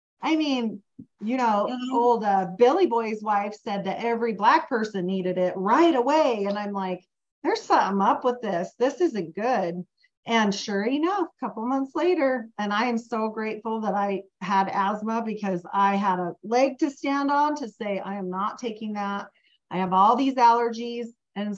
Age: 40-59